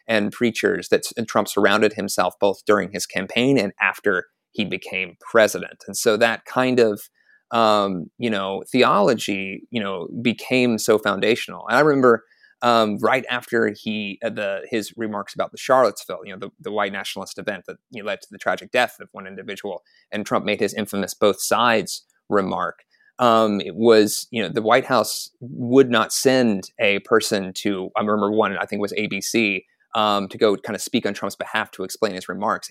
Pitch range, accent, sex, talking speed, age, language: 100-120 Hz, American, male, 190 wpm, 30-49, English